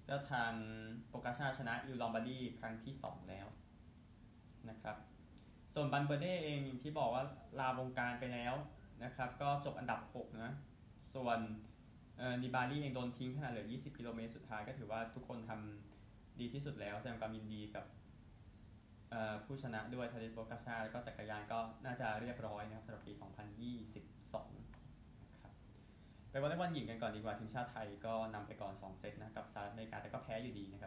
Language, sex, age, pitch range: Thai, male, 20-39, 110-130 Hz